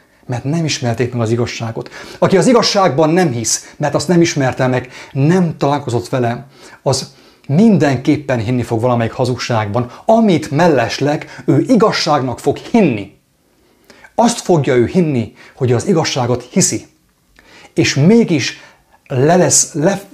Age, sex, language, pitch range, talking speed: 30-49, male, English, 120-165 Hz, 130 wpm